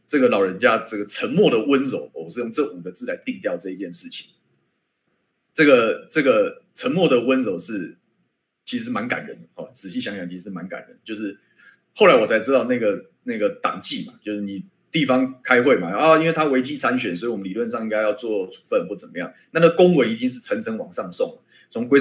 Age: 30-49